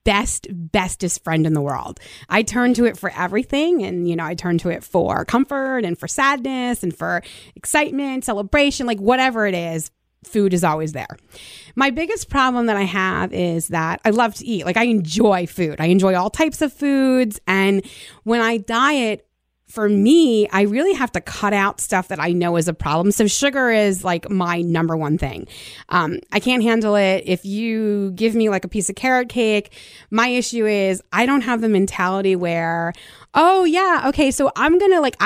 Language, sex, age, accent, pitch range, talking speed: English, female, 30-49, American, 185-245 Hz, 200 wpm